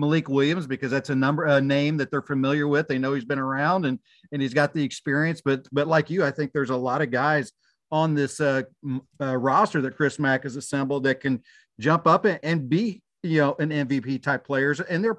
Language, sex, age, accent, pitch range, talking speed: English, male, 40-59, American, 135-160 Hz, 235 wpm